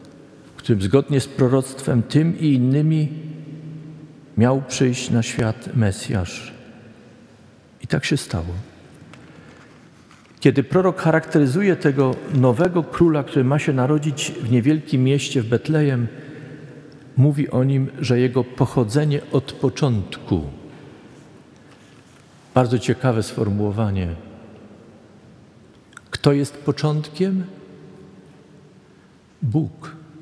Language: Polish